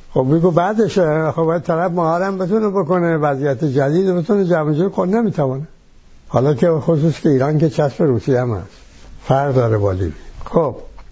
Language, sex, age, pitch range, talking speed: English, male, 60-79, 125-170 Hz, 155 wpm